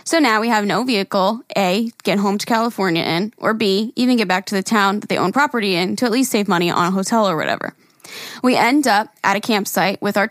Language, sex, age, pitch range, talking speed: English, female, 10-29, 200-250 Hz, 250 wpm